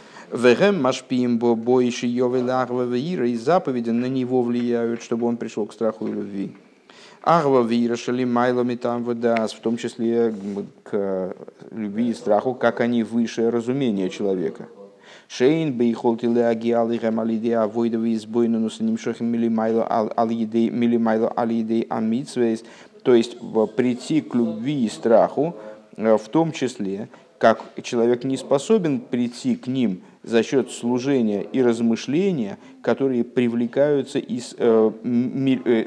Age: 50-69